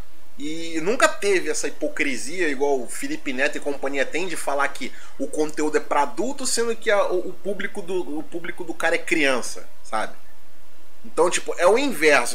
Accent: Brazilian